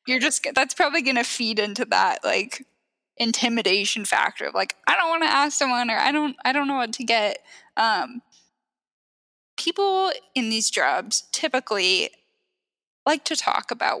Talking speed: 165 wpm